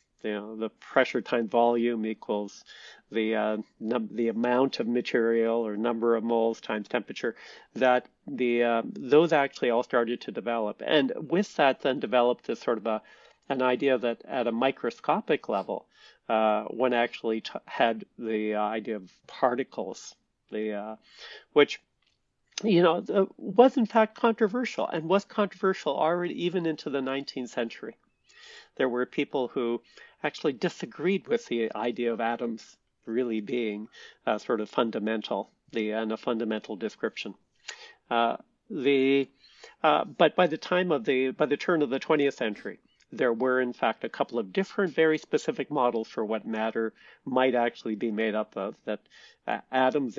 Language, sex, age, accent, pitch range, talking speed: English, male, 50-69, American, 110-150 Hz, 160 wpm